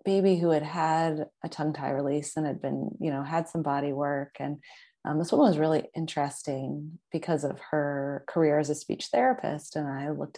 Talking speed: 200 wpm